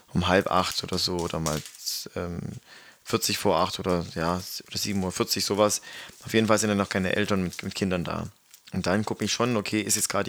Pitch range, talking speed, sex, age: 95-110 Hz, 220 wpm, male, 20-39